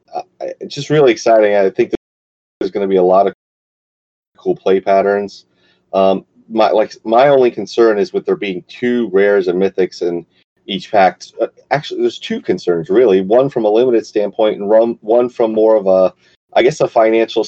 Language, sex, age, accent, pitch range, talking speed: English, male, 30-49, American, 95-140 Hz, 185 wpm